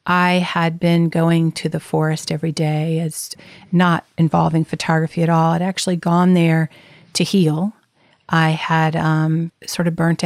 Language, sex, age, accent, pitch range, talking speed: English, female, 40-59, American, 160-175 Hz, 160 wpm